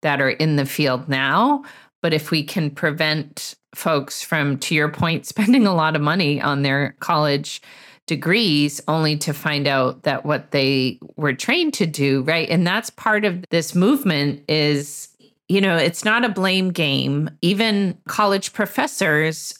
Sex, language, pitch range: female, English, 145-185 Hz